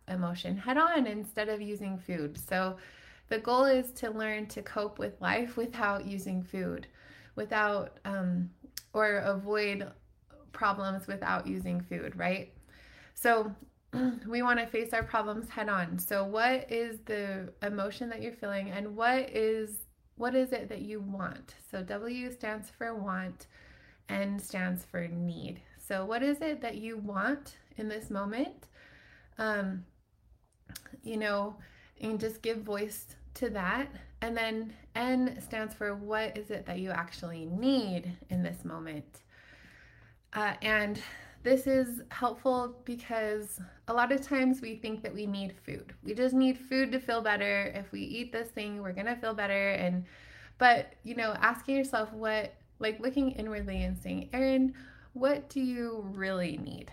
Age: 20-39